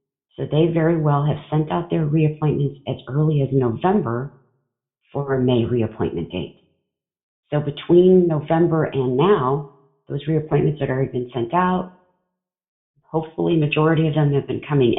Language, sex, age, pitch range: English, female, 40-59, 125-155 Hz